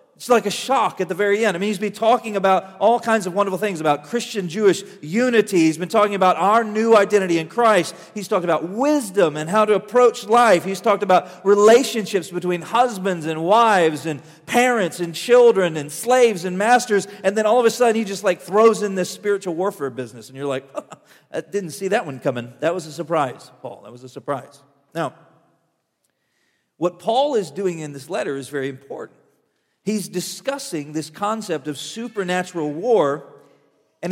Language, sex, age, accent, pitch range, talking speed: English, male, 40-59, American, 160-215 Hz, 190 wpm